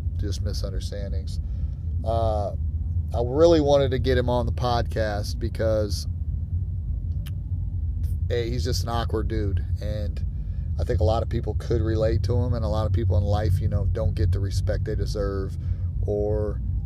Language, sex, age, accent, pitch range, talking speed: English, male, 30-49, American, 85-100 Hz, 160 wpm